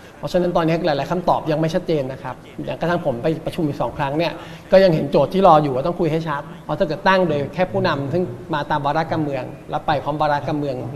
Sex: male